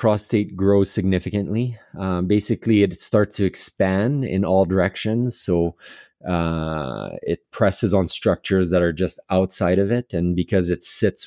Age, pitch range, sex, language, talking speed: 30-49, 90-110 Hz, male, English, 150 wpm